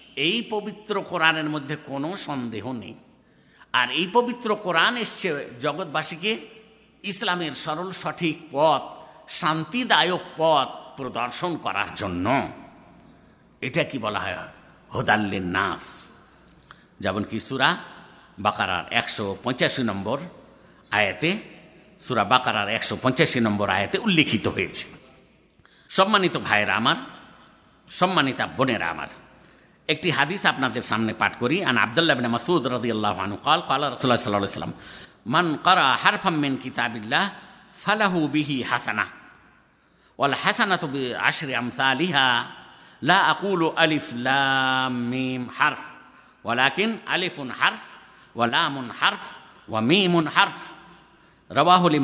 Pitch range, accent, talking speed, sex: 115-175 Hz, native, 50 wpm, male